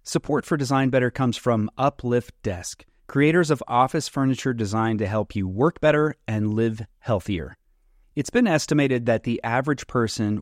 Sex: male